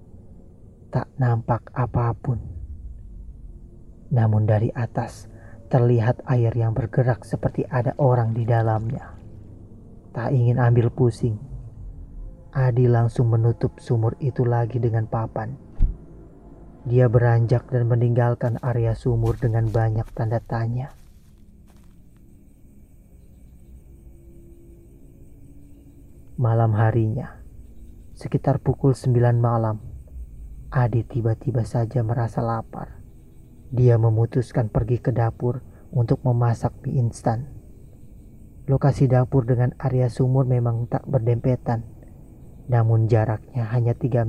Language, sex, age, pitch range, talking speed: Indonesian, male, 30-49, 110-125 Hz, 95 wpm